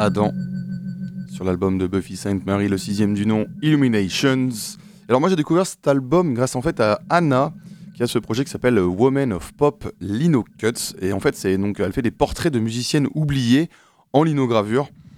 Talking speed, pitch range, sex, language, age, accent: 190 wpm, 100-140 Hz, male, French, 20-39, French